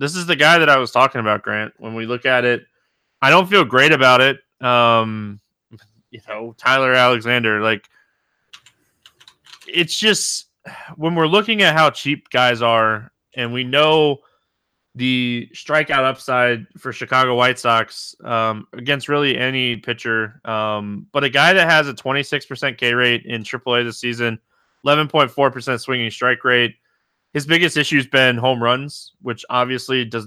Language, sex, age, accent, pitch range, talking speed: English, male, 20-39, American, 115-145 Hz, 160 wpm